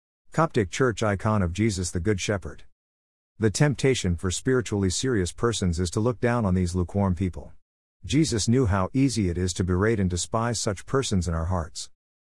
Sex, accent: male, American